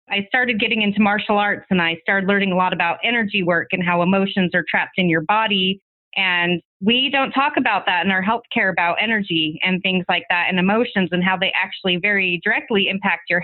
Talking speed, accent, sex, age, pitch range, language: 215 wpm, American, female, 30-49, 175-210 Hz, English